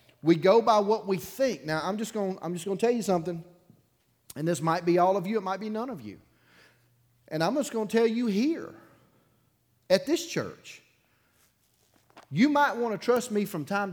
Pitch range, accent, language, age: 120-175 Hz, American, English, 40-59